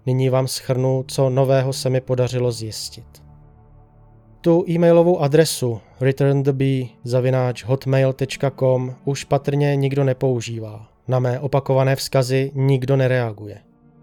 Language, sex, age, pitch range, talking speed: Czech, male, 20-39, 125-150 Hz, 105 wpm